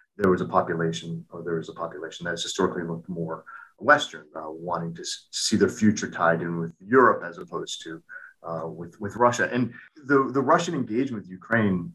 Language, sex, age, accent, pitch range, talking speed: English, male, 40-59, American, 95-125 Hz, 200 wpm